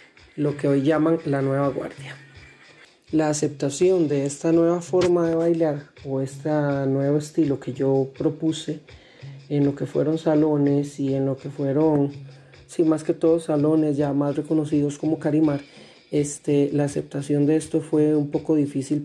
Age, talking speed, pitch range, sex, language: 30-49, 160 wpm, 140-160 Hz, male, Spanish